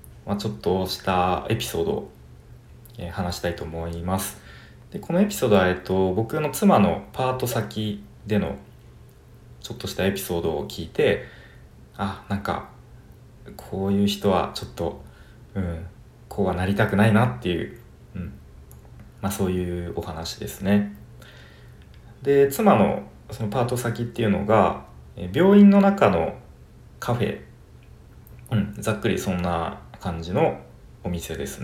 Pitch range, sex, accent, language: 90-120 Hz, male, native, Japanese